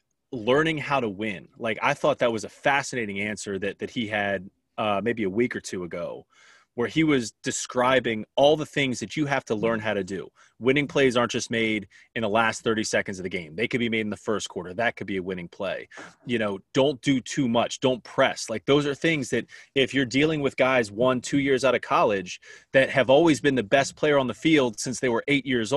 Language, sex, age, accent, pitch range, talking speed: English, male, 30-49, American, 115-140 Hz, 240 wpm